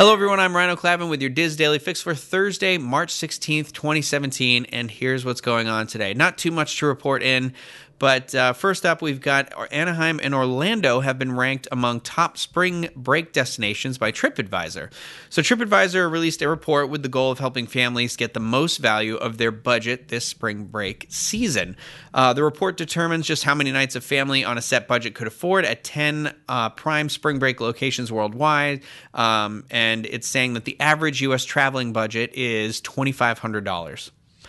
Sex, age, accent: male, 30-49, American